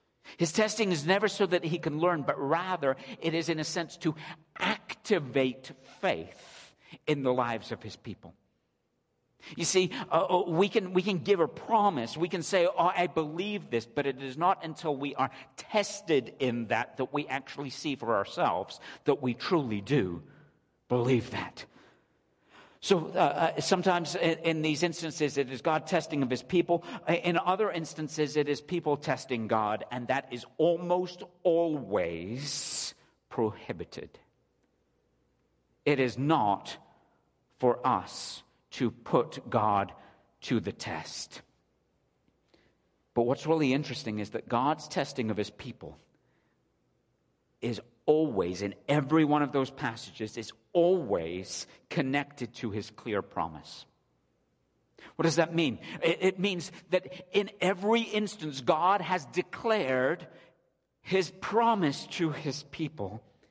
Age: 50-69